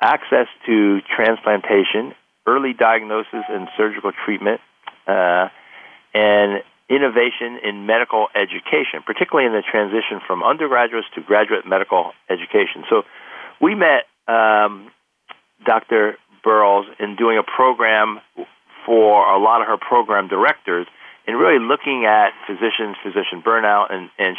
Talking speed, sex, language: 125 wpm, male, English